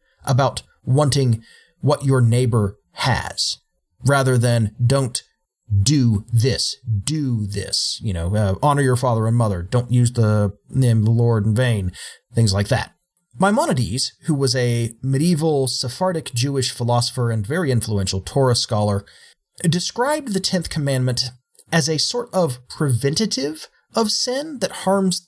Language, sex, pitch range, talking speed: English, male, 115-160 Hz, 140 wpm